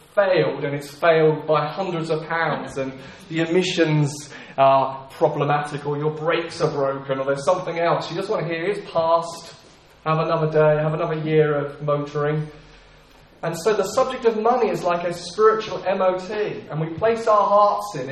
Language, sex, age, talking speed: English, male, 30-49, 180 wpm